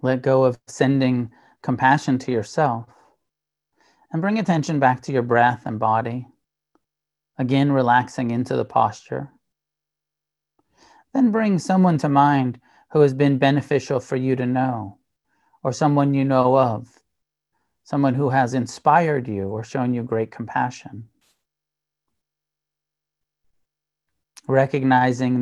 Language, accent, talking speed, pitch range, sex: English, American, 120 wpm, 120-140 Hz, male